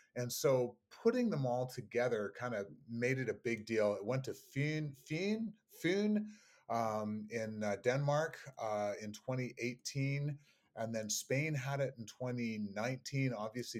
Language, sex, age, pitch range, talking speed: English, male, 30-49, 105-130 Hz, 140 wpm